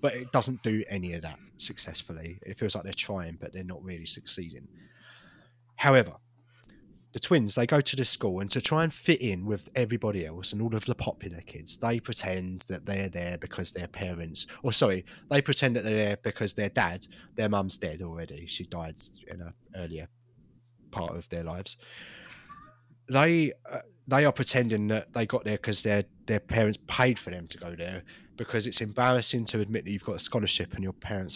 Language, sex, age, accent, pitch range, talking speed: English, male, 30-49, British, 95-125 Hz, 200 wpm